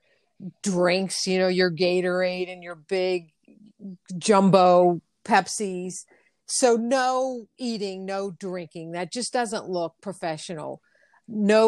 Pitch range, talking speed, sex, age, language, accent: 175-215 Hz, 110 wpm, female, 50-69, English, American